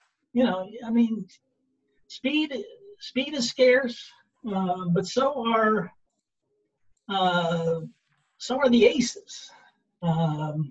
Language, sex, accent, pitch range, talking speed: English, male, American, 175-235 Hz, 100 wpm